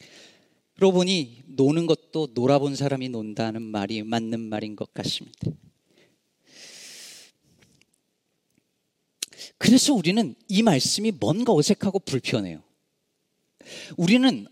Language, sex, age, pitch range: Korean, male, 40-59, 150-230 Hz